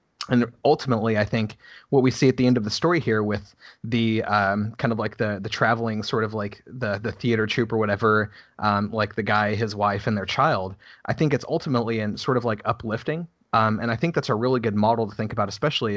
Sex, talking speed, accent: male, 235 wpm, American